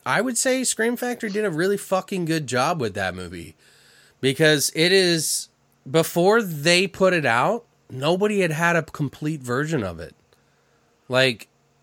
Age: 30-49